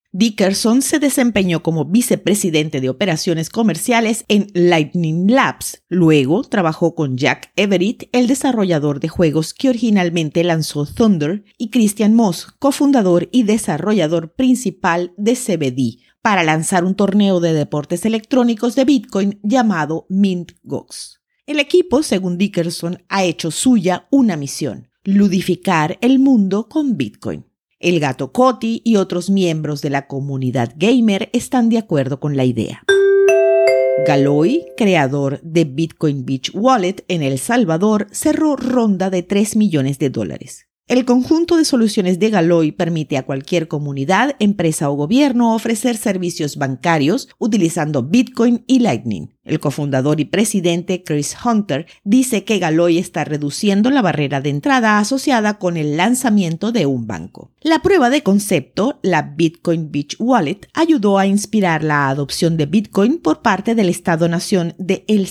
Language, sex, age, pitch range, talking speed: Spanish, female, 50-69, 160-230 Hz, 140 wpm